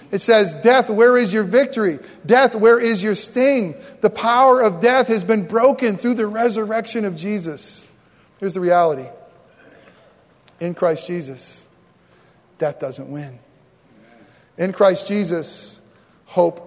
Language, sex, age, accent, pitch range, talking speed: English, male, 40-59, American, 165-200 Hz, 135 wpm